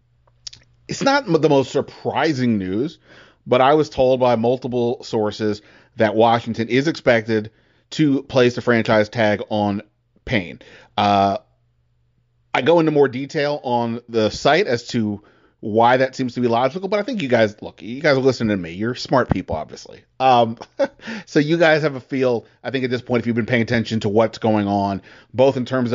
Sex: male